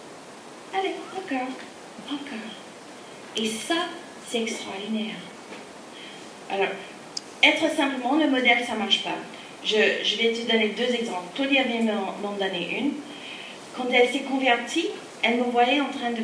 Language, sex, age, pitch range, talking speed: French, female, 40-59, 215-275 Hz, 140 wpm